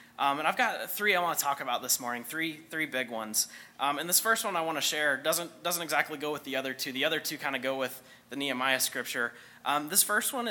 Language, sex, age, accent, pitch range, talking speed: English, male, 20-39, American, 125-160 Hz, 270 wpm